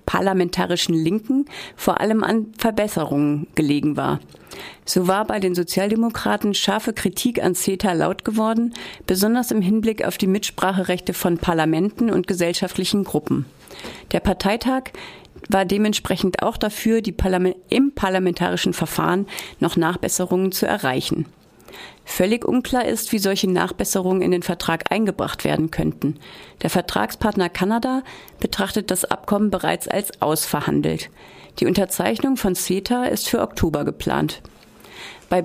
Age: 40-59